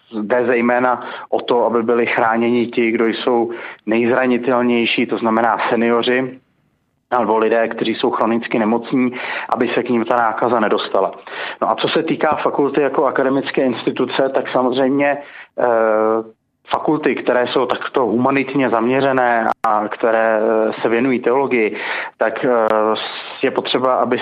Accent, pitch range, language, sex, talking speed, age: native, 115-130 Hz, Czech, male, 135 wpm, 30-49